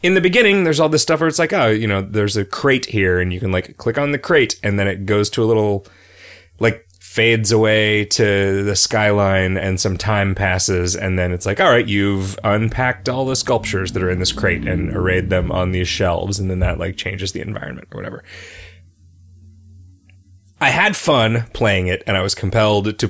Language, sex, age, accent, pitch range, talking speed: English, male, 30-49, American, 95-115 Hz, 215 wpm